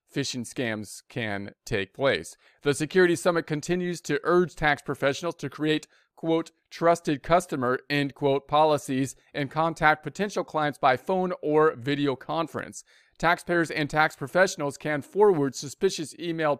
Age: 40-59